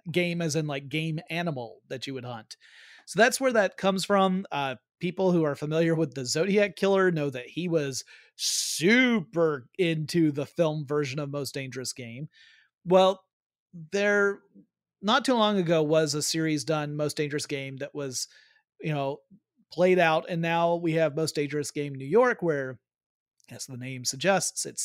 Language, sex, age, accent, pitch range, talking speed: English, male, 30-49, American, 150-185 Hz, 175 wpm